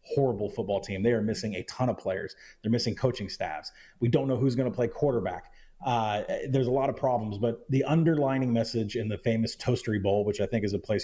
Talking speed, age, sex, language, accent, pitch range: 235 wpm, 30-49, male, English, American, 100-130 Hz